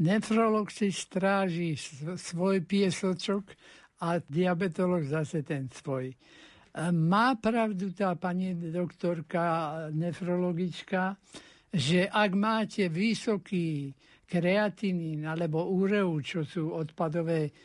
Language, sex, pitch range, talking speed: Slovak, male, 165-200 Hz, 90 wpm